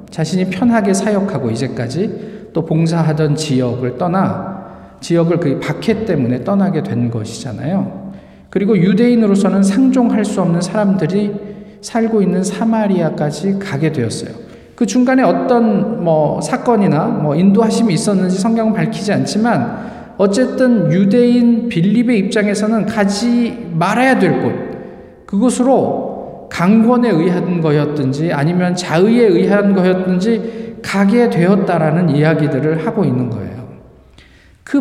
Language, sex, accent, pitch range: Korean, male, native, 170-215 Hz